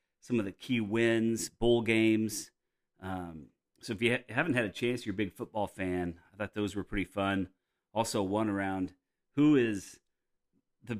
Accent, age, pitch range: American, 40-59, 95-120 Hz